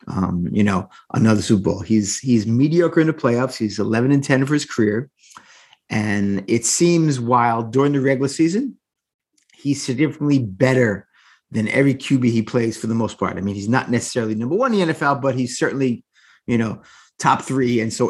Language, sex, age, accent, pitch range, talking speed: English, male, 30-49, American, 120-150 Hz, 190 wpm